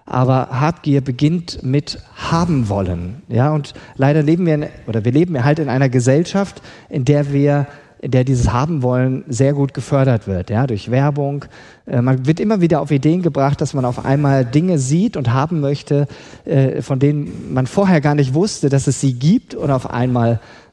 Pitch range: 130-170 Hz